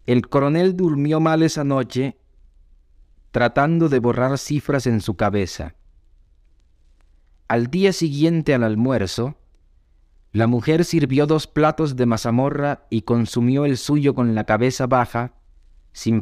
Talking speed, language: 125 wpm, Spanish